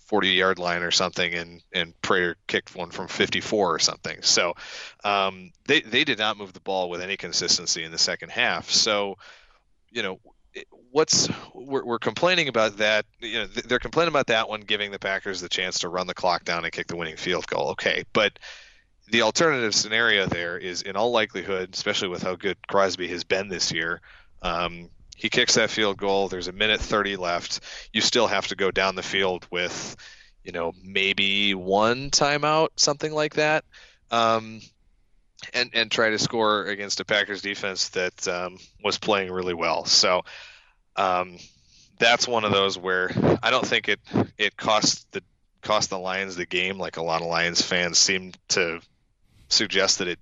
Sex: male